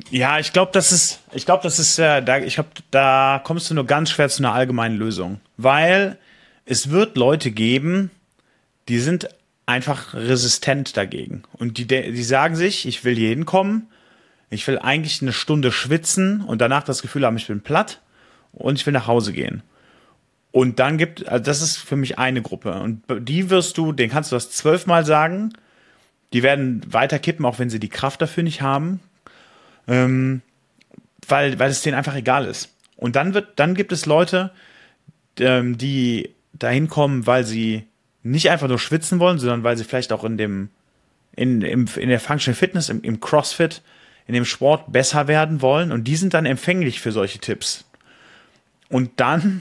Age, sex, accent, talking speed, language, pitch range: 30-49, male, German, 180 wpm, German, 125-160 Hz